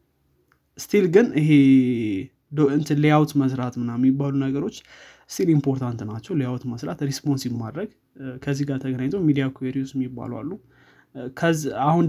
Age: 20-39